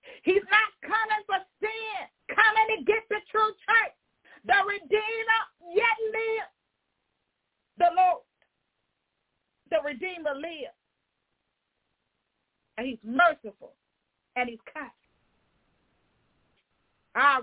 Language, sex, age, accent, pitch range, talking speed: English, female, 40-59, American, 220-285 Hz, 95 wpm